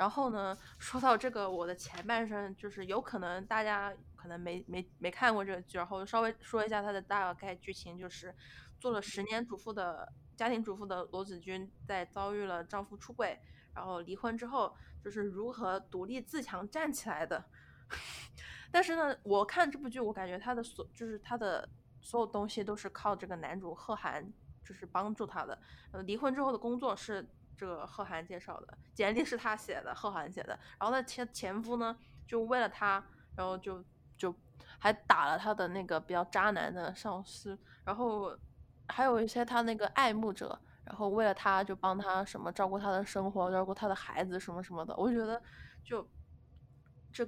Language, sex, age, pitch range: Chinese, female, 20-39, 185-230 Hz